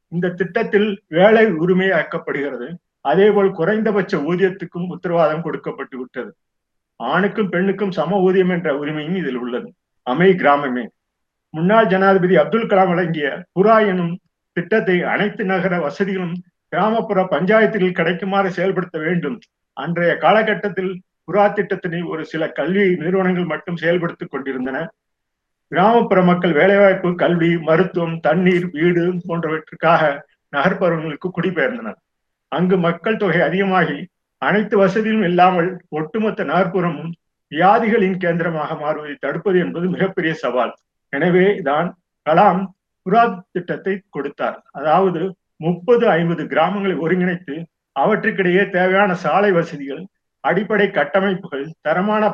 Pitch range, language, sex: 165-195 Hz, Tamil, male